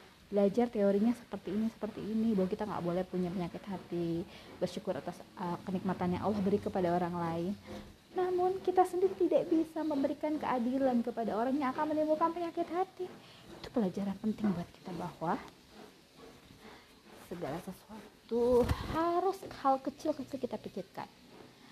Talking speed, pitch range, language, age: 135 wpm, 185-250 Hz, Indonesian, 20-39